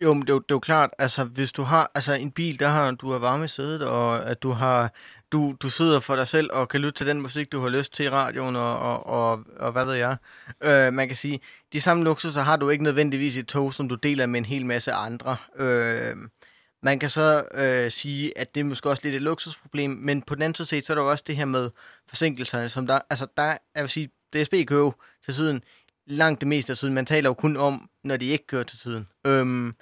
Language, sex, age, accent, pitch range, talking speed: Danish, male, 20-39, native, 130-150 Hz, 255 wpm